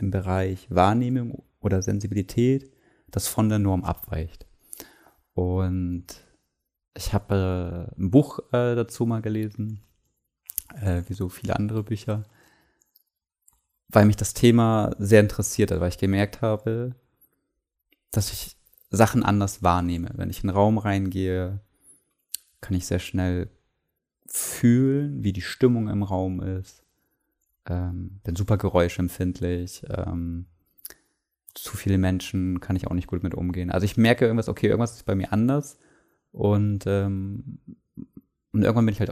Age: 20-39